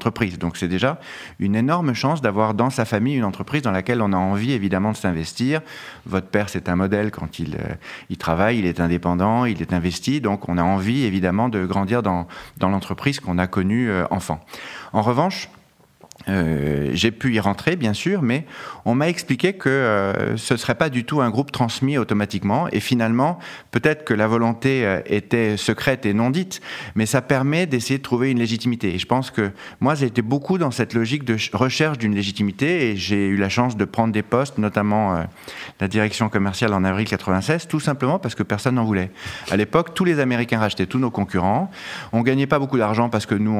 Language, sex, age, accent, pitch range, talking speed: French, male, 30-49, French, 95-125 Hz, 205 wpm